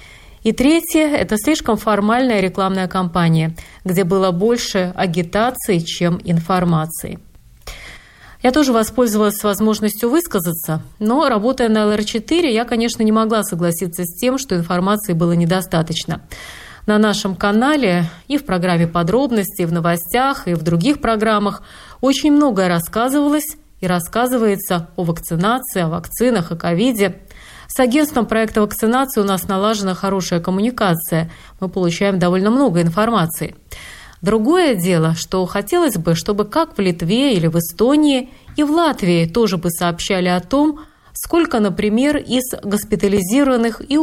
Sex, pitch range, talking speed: female, 175-235 Hz, 135 wpm